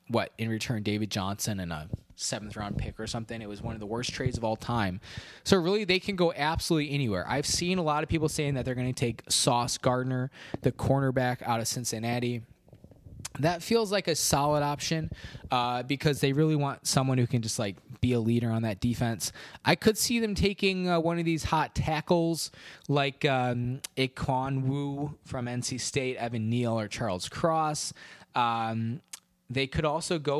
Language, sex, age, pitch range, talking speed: English, male, 20-39, 120-155 Hz, 190 wpm